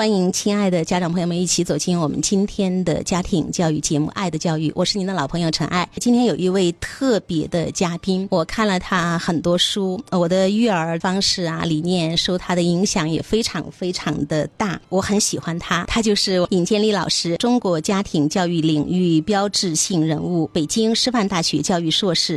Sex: female